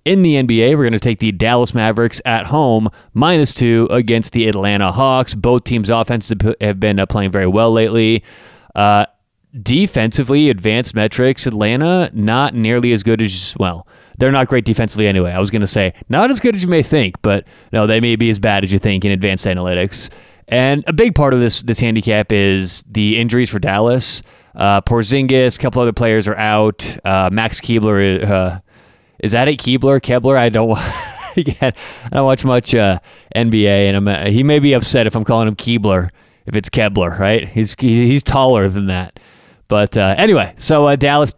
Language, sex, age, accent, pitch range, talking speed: English, male, 30-49, American, 105-125 Hz, 190 wpm